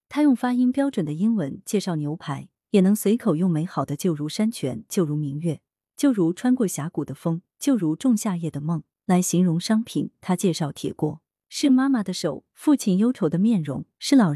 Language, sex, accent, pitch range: Chinese, female, native, 155-225 Hz